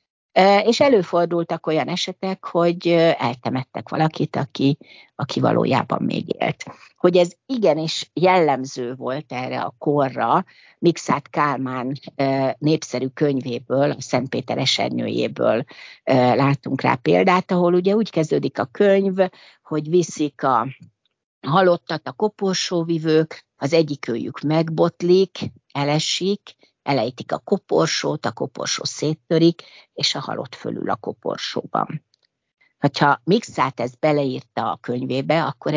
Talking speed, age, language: 110 wpm, 60-79, Hungarian